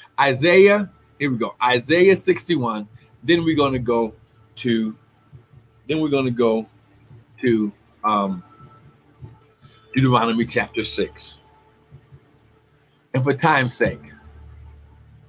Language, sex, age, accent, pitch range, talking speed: English, male, 50-69, American, 120-175 Hz, 95 wpm